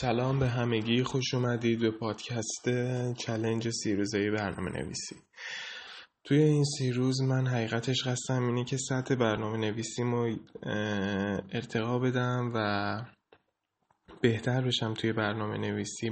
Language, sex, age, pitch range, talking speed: Persian, male, 20-39, 105-125 Hz, 115 wpm